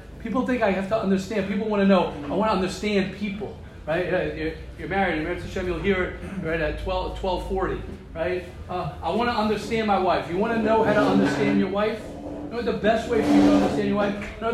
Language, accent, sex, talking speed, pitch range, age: English, American, male, 245 wpm, 175-220 Hz, 40-59